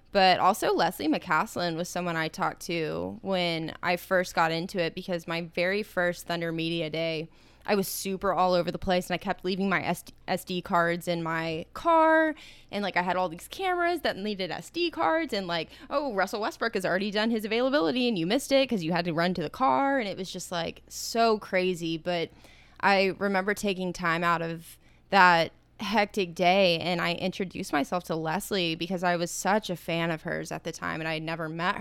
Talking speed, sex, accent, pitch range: 210 wpm, female, American, 170-200 Hz